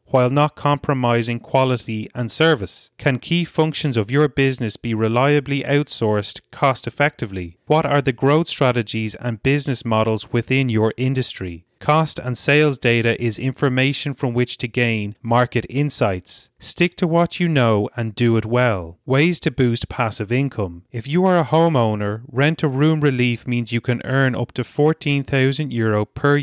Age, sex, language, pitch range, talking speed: 30-49, male, English, 115-145 Hz, 155 wpm